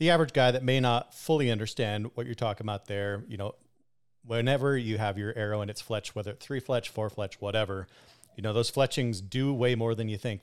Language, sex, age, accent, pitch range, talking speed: English, male, 40-59, American, 100-120 Hz, 230 wpm